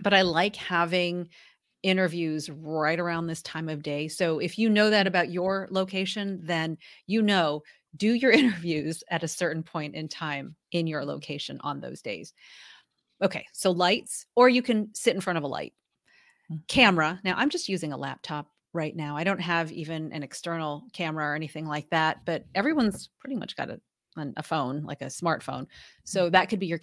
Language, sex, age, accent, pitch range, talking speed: English, female, 30-49, American, 155-190 Hz, 190 wpm